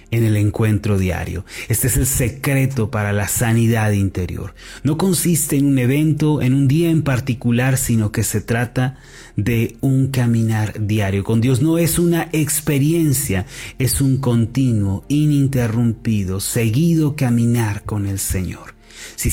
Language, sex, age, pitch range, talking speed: Spanish, male, 30-49, 105-135 Hz, 145 wpm